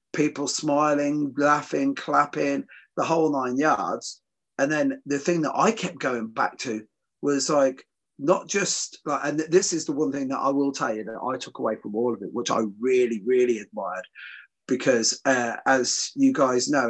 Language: English